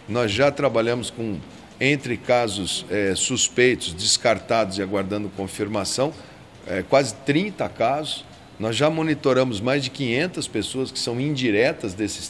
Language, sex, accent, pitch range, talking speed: Portuguese, male, Brazilian, 105-140 Hz, 120 wpm